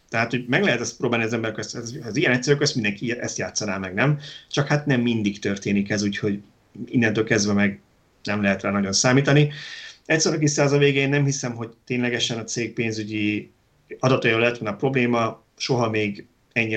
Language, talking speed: Hungarian, 190 wpm